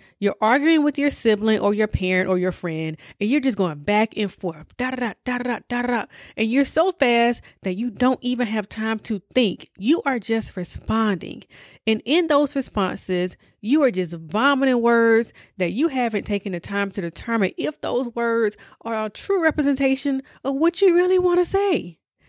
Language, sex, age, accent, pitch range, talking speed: English, female, 30-49, American, 190-260 Hz, 185 wpm